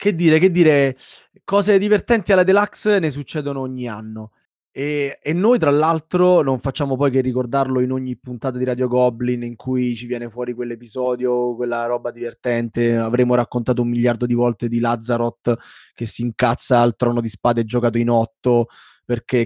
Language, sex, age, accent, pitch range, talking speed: Italian, male, 20-39, native, 125-170 Hz, 175 wpm